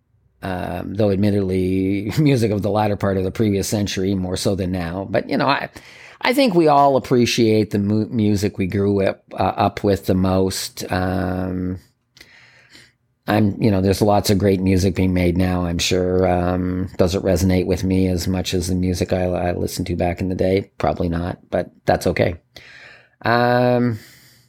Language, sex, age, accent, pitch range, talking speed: English, male, 40-59, American, 95-120 Hz, 185 wpm